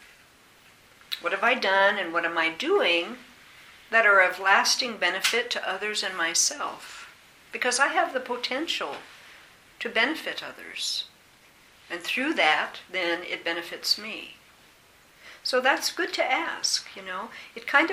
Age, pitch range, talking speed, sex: 60-79, 175-245 Hz, 140 wpm, female